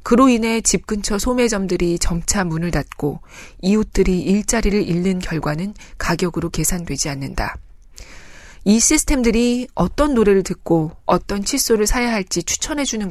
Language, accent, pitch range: Korean, native, 175-230 Hz